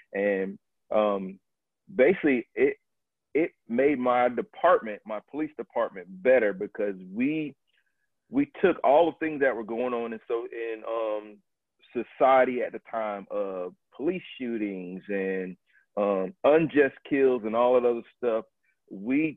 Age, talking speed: 40-59, 135 wpm